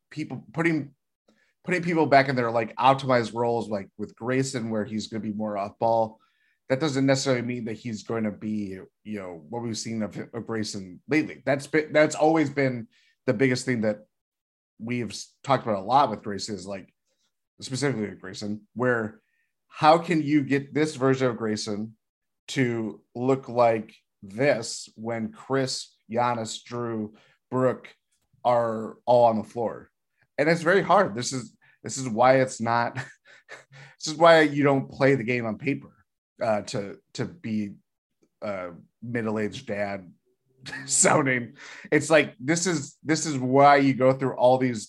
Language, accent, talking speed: English, American, 165 wpm